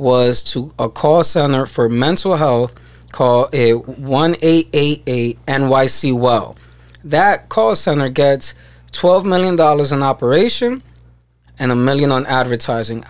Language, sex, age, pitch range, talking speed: English, male, 20-39, 120-155 Hz, 125 wpm